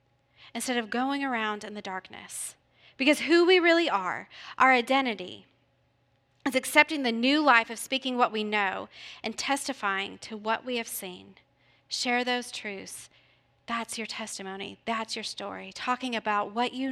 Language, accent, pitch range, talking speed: English, American, 220-285 Hz, 155 wpm